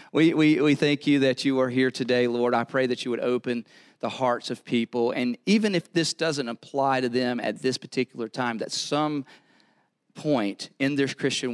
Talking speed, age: 205 wpm, 40-59